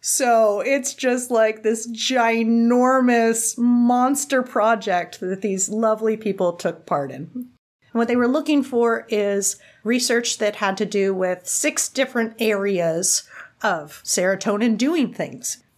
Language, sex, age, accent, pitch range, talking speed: English, female, 30-49, American, 190-245 Hz, 130 wpm